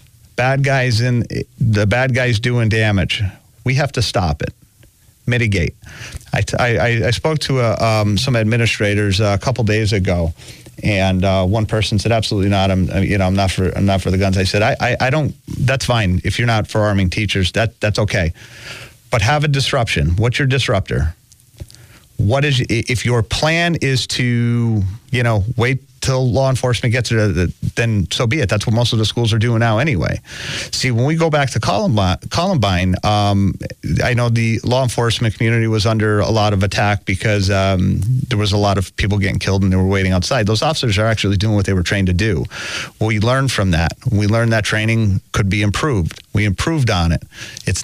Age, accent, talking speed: 40-59, American, 200 wpm